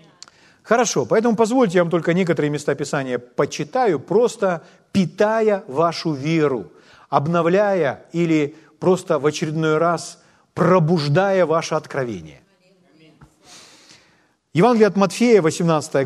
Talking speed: 100 wpm